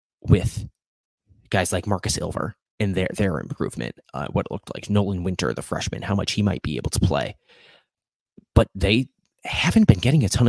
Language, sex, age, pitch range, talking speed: English, male, 30-49, 95-115 Hz, 190 wpm